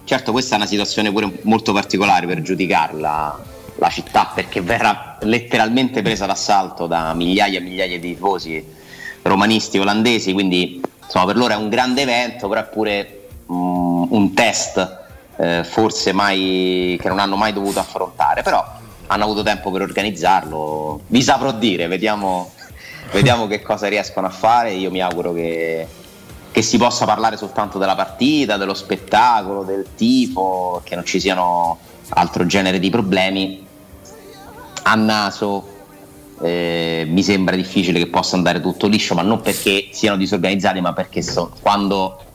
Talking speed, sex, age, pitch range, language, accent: 150 wpm, male, 30-49, 90-105 Hz, Italian, native